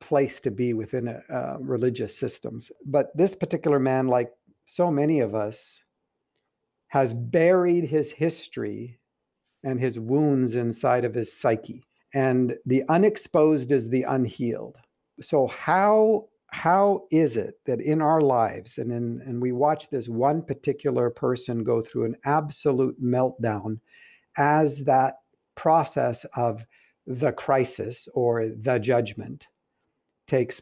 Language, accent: English, American